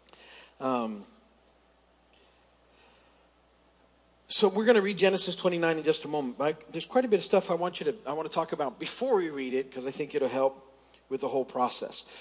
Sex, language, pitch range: male, English, 135-200 Hz